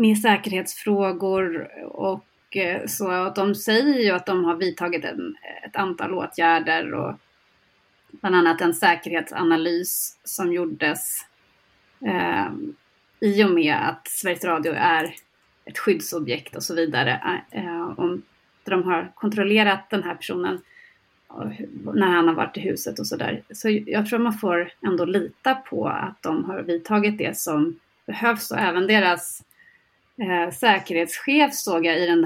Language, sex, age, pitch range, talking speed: Swedish, female, 30-49, 175-220 Hz, 140 wpm